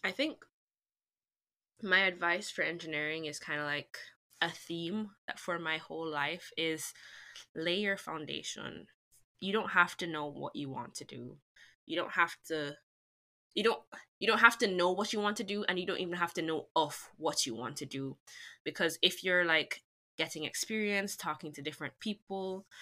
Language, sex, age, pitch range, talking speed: English, female, 10-29, 150-180 Hz, 185 wpm